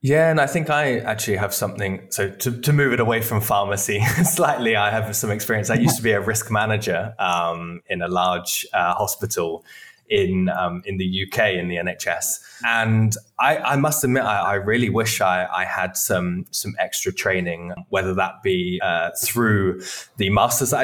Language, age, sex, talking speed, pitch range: English, 20-39, male, 190 wpm, 95-115 Hz